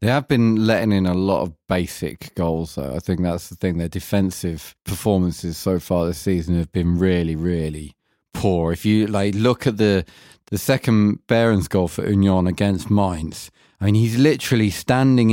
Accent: British